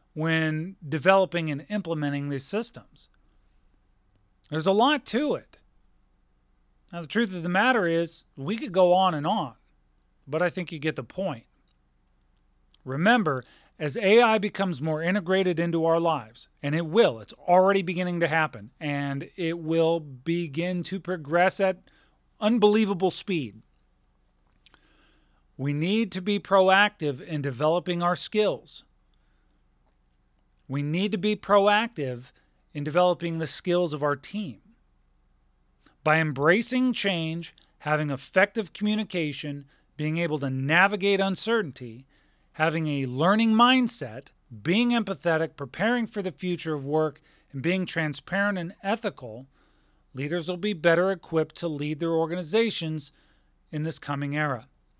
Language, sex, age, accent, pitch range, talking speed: English, male, 40-59, American, 135-190 Hz, 130 wpm